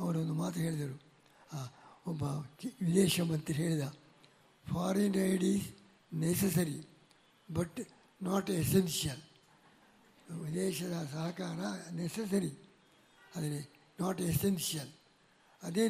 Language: Kannada